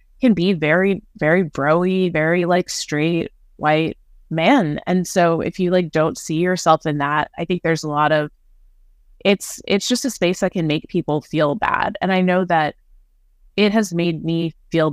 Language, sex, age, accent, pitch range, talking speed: English, female, 20-39, American, 155-185 Hz, 185 wpm